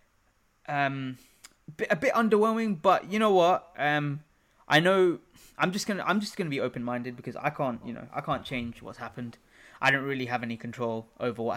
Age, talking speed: 20-39, 190 wpm